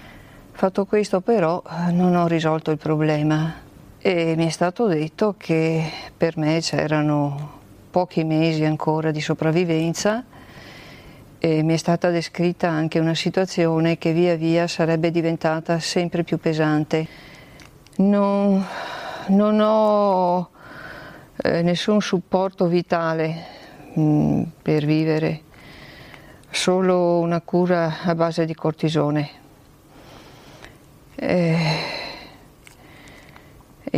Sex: female